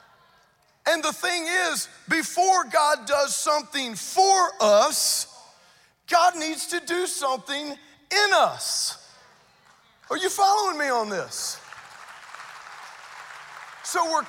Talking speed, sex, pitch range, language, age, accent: 105 wpm, male, 195-305 Hz, English, 40-59, American